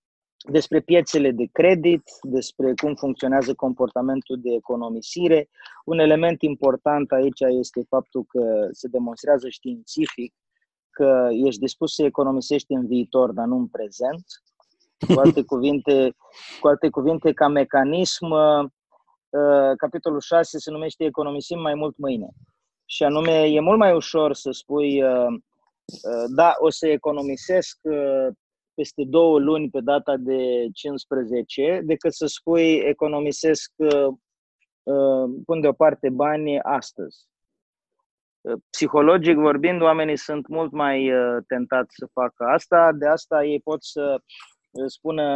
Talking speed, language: 120 wpm, English